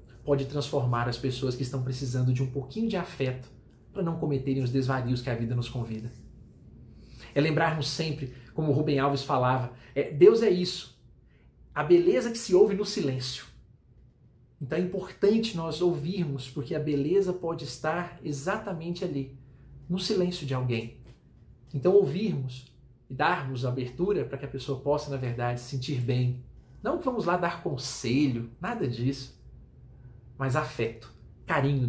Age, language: 40-59, Portuguese